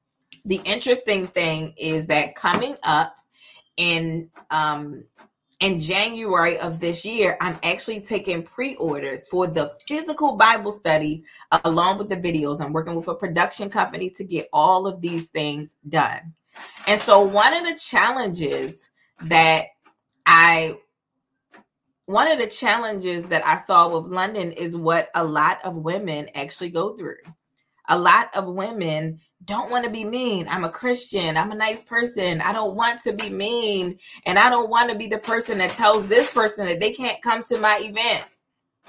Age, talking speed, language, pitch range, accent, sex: 20-39, 165 wpm, English, 165-225 Hz, American, female